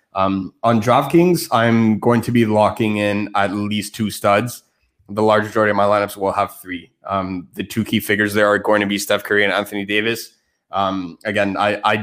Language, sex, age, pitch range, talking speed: English, male, 20-39, 105-120 Hz, 205 wpm